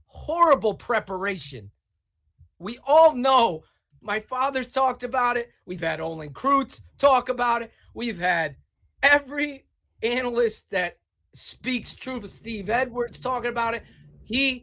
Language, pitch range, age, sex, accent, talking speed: English, 220-315 Hz, 30-49, male, American, 125 wpm